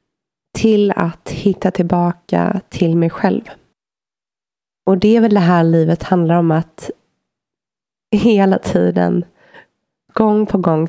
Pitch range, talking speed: 165-190 Hz, 120 wpm